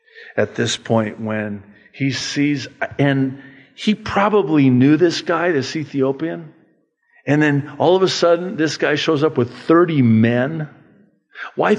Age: 50-69